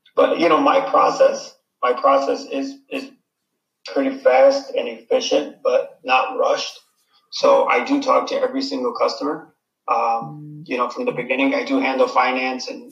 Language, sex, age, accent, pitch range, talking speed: English, male, 30-49, American, 245-280 Hz, 165 wpm